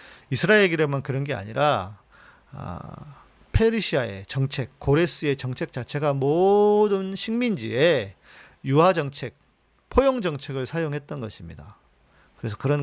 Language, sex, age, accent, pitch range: Korean, male, 40-59, native, 125-180 Hz